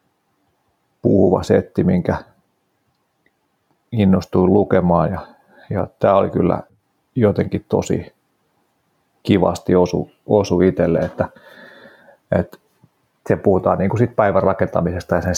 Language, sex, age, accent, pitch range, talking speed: Finnish, male, 30-49, native, 90-100 Hz, 95 wpm